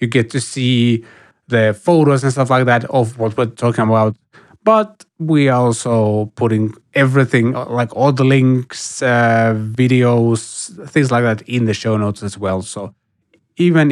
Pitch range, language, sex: 110-140 Hz, English, male